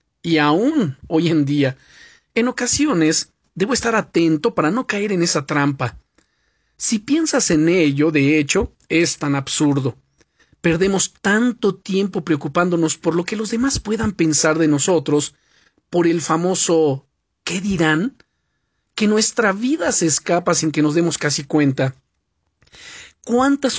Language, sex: Spanish, male